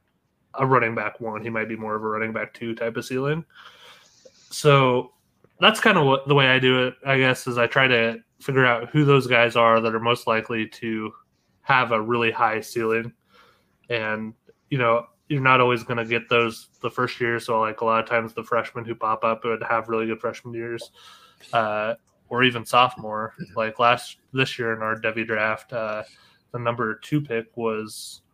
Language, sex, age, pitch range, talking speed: English, male, 20-39, 110-125 Hz, 200 wpm